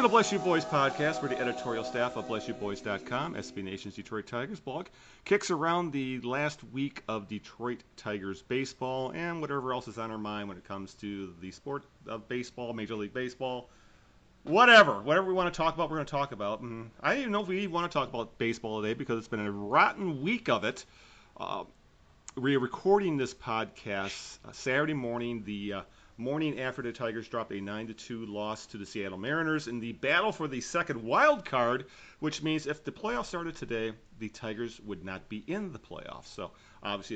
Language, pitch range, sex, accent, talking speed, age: English, 105-150 Hz, male, American, 200 wpm, 40-59